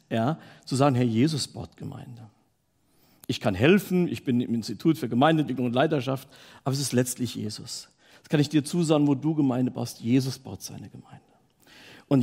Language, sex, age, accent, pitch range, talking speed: German, male, 50-69, German, 125-155 Hz, 180 wpm